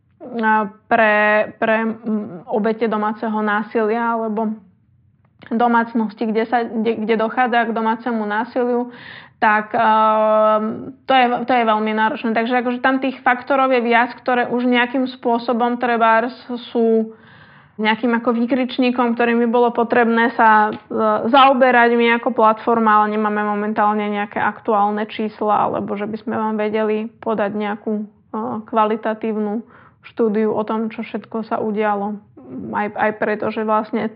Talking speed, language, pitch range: 130 wpm, Czech, 220-240 Hz